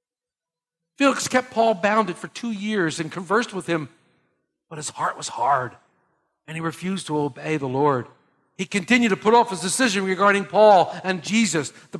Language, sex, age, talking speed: English, male, 50-69, 175 wpm